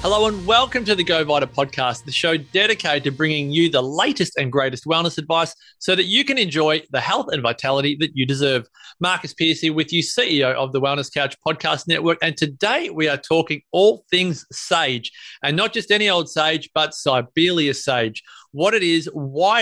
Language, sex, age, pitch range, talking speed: English, male, 30-49, 140-180 Hz, 195 wpm